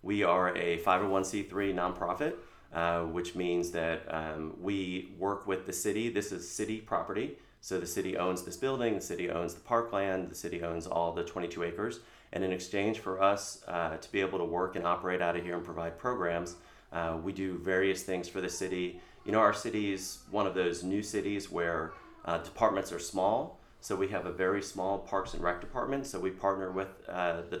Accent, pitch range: American, 85-100 Hz